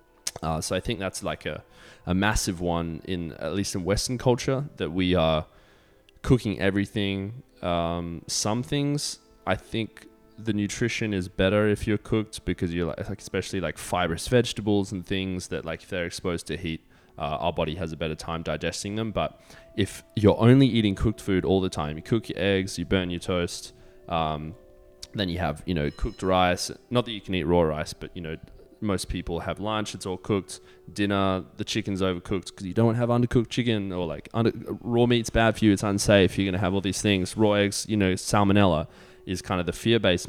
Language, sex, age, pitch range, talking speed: English, male, 20-39, 85-110 Hz, 205 wpm